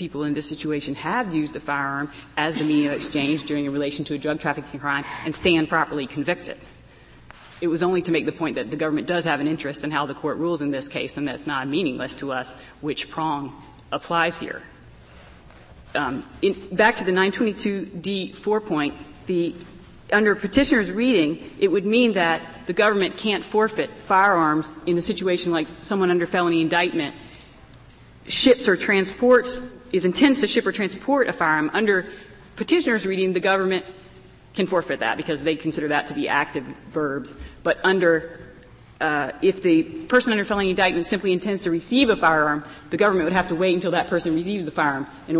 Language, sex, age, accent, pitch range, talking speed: English, female, 40-59, American, 150-190 Hz, 185 wpm